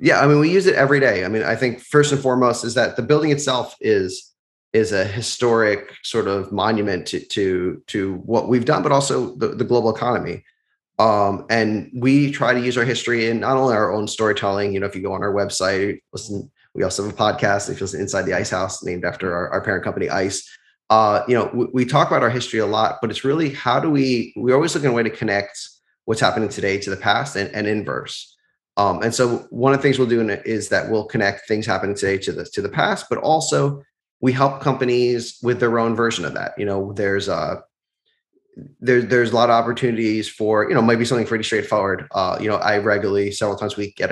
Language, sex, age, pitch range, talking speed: English, male, 20-39, 100-130 Hz, 240 wpm